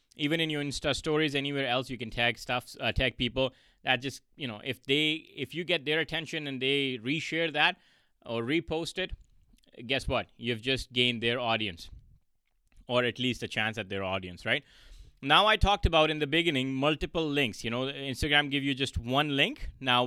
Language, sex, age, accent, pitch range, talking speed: English, male, 20-39, Indian, 120-145 Hz, 195 wpm